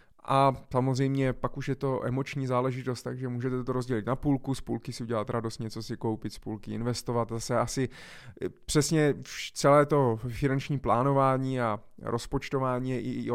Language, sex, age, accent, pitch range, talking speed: Czech, male, 20-39, native, 115-140 Hz, 160 wpm